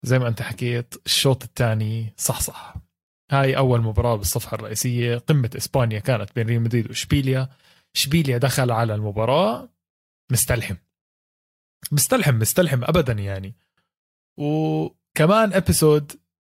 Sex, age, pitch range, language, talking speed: male, 20-39, 110-140 Hz, Arabic, 115 wpm